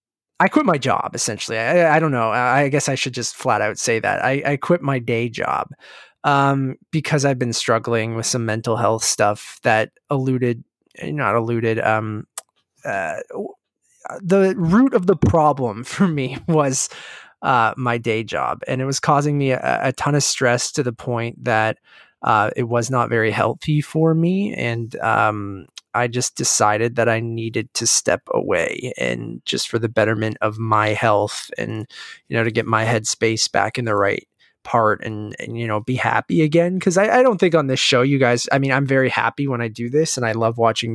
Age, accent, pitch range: 20-39, American, 115-140 Hz